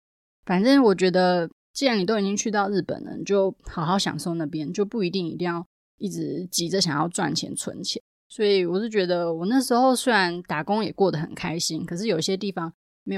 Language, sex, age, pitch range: Chinese, female, 20-39, 170-205 Hz